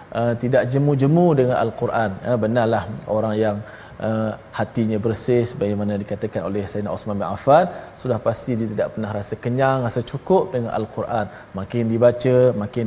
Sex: male